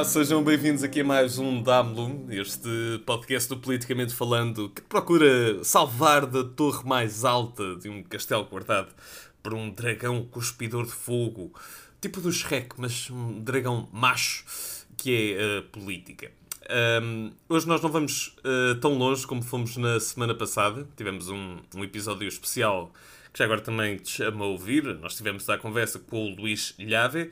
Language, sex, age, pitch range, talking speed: Portuguese, male, 20-39, 110-145 Hz, 165 wpm